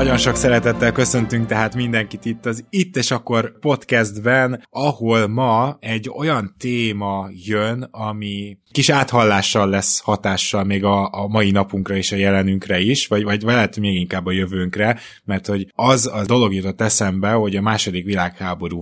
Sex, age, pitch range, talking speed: male, 20-39, 95-110 Hz, 155 wpm